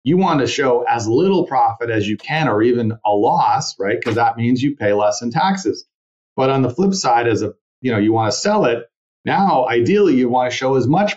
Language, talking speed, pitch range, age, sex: English, 240 wpm, 110-155 Hz, 40-59, male